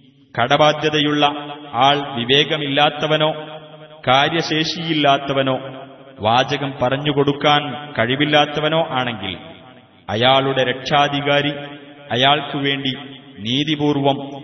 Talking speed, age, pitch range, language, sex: 85 wpm, 30-49, 125-145 Hz, Arabic, male